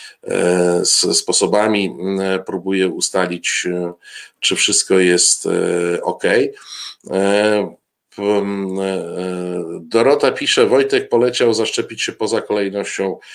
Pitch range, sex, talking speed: 90-115 Hz, male, 70 wpm